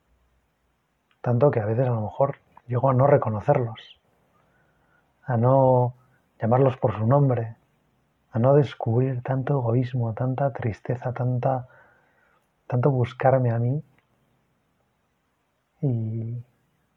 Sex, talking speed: male, 105 wpm